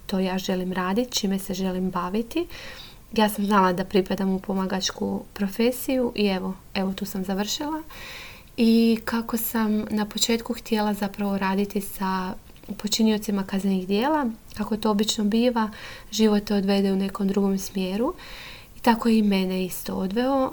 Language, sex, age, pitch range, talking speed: Croatian, female, 20-39, 190-225 Hz, 150 wpm